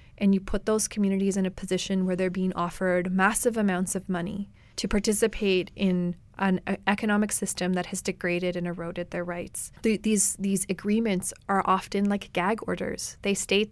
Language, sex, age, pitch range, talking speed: English, female, 20-39, 190-230 Hz, 170 wpm